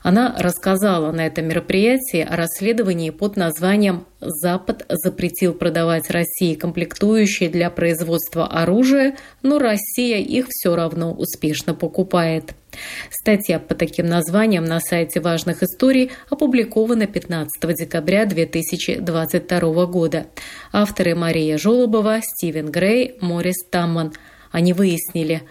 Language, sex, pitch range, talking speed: Russian, female, 165-200 Hz, 110 wpm